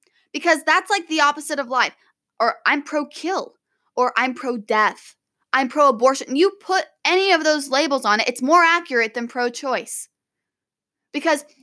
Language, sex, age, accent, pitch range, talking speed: English, female, 10-29, American, 250-340 Hz, 150 wpm